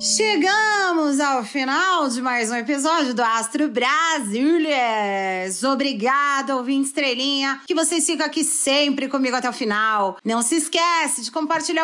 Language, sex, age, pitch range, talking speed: Portuguese, female, 30-49, 245-315 Hz, 135 wpm